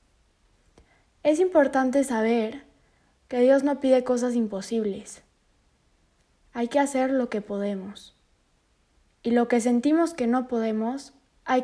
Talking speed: 120 wpm